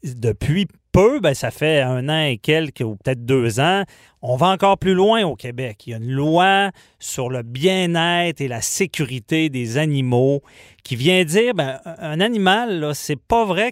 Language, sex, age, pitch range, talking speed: French, male, 30-49, 125-160 Hz, 190 wpm